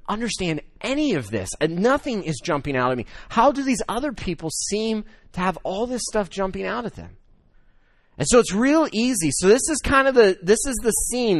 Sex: male